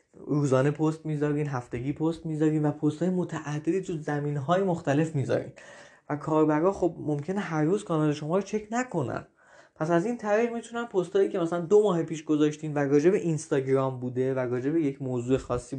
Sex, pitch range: male, 145-185 Hz